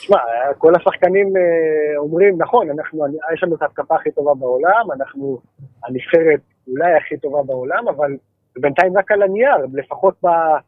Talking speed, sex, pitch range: 140 wpm, male, 155-250 Hz